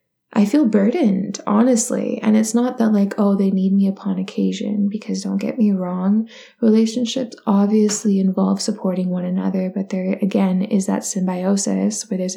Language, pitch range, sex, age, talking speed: English, 195-230 Hz, female, 10-29, 165 wpm